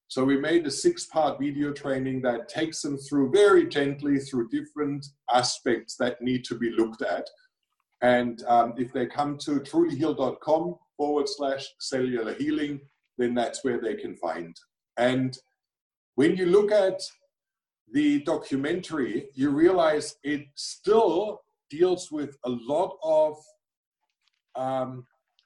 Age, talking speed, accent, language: 50-69, 135 wpm, German, English